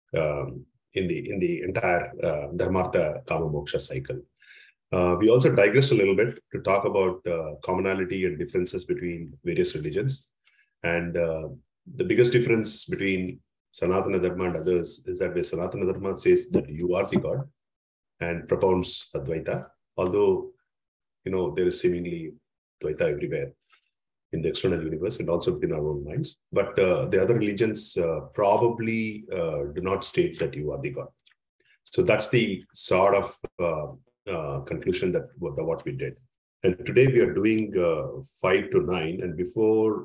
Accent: Indian